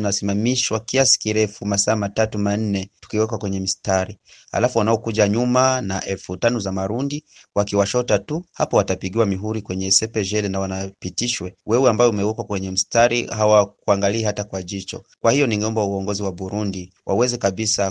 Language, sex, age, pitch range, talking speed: Swahili, male, 30-49, 100-120 Hz, 145 wpm